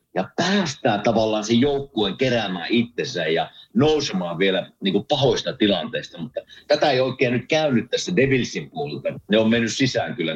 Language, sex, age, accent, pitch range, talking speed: Finnish, male, 50-69, native, 100-140 Hz, 155 wpm